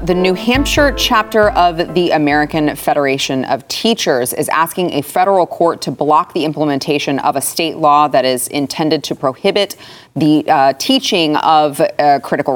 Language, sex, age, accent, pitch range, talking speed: English, female, 30-49, American, 145-185 Hz, 160 wpm